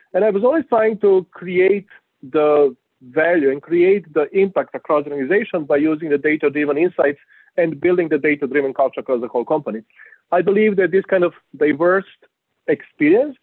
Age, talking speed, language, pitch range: 40-59, 180 wpm, English, 150-185 Hz